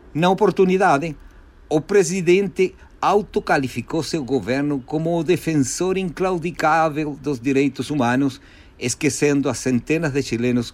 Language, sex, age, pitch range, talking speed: Portuguese, male, 50-69, 115-150 Hz, 105 wpm